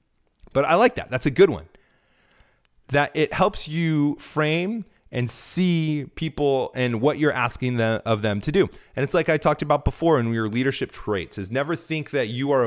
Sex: male